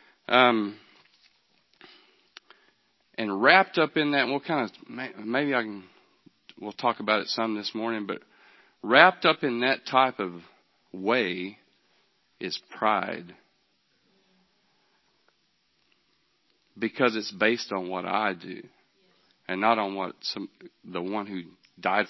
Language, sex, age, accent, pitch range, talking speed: English, male, 40-59, American, 95-125 Hz, 120 wpm